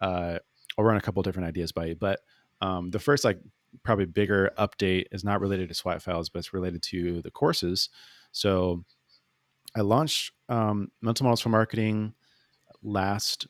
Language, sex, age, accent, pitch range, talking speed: English, male, 30-49, American, 90-110 Hz, 170 wpm